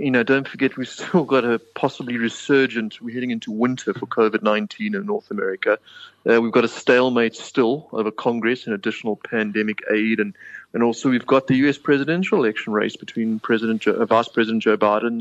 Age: 30-49